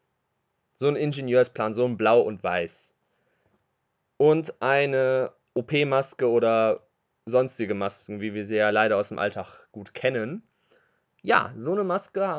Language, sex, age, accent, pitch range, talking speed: German, male, 20-39, German, 125-160 Hz, 135 wpm